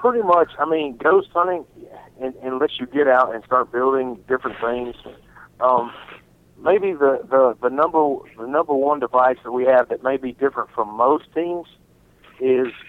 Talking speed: 175 wpm